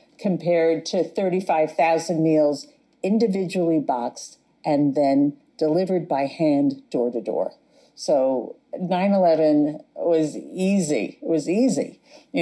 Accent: American